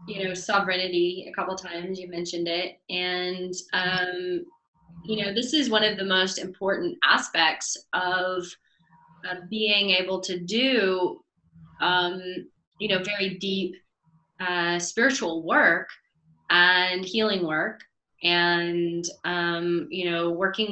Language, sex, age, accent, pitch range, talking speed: English, female, 20-39, American, 175-195 Hz, 125 wpm